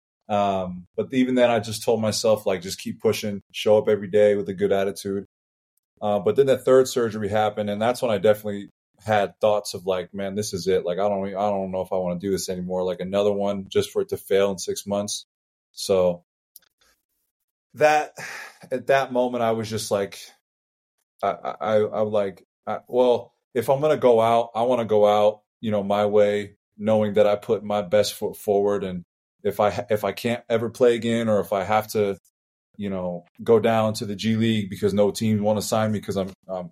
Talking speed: 220 wpm